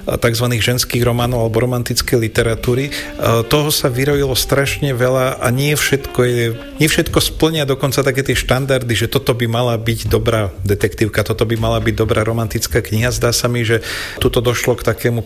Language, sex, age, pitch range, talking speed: Slovak, male, 40-59, 115-130 Hz, 165 wpm